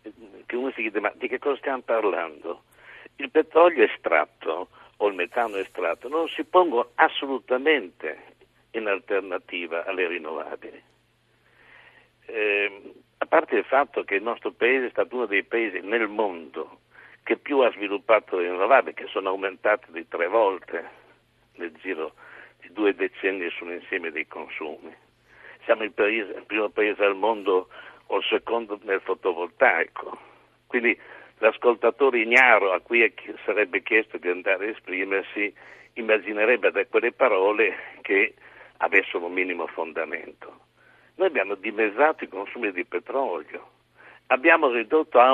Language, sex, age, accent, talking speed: Italian, male, 60-79, native, 140 wpm